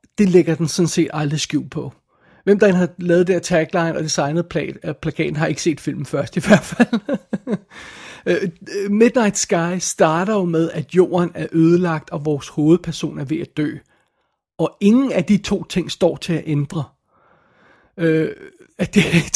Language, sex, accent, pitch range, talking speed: Danish, male, native, 160-195 Hz, 170 wpm